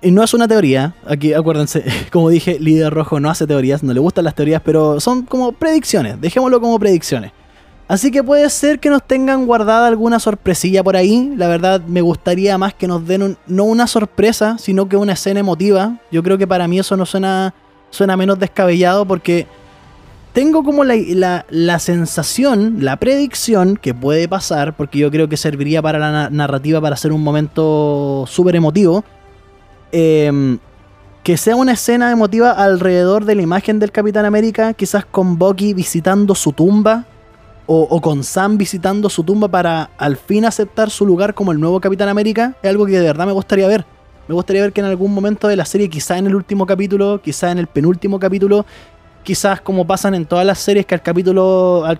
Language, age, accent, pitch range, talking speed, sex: Spanish, 20-39, Argentinian, 160-205 Hz, 195 wpm, male